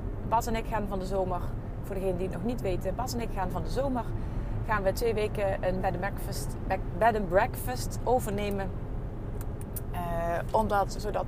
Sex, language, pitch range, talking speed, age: female, Dutch, 105-115 Hz, 190 wpm, 30-49